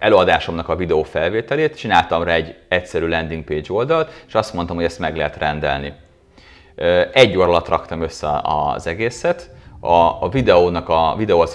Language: Hungarian